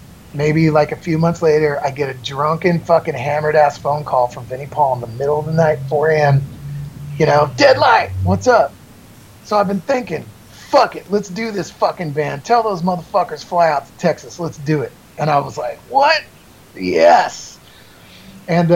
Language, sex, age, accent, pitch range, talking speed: English, male, 30-49, American, 145-190 Hz, 185 wpm